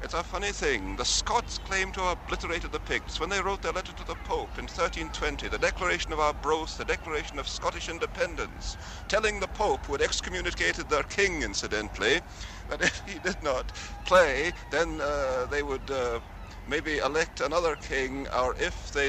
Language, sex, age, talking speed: English, male, 50-69, 185 wpm